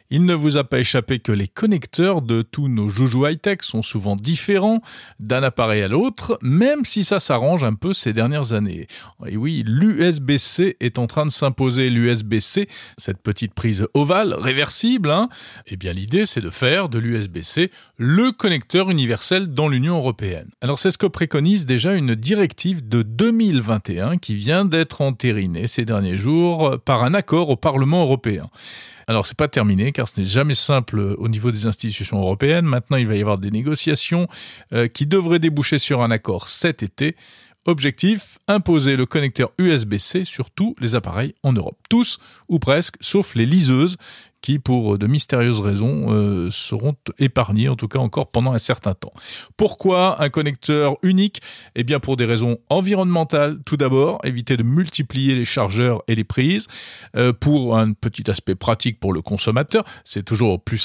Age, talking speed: 40-59, 175 wpm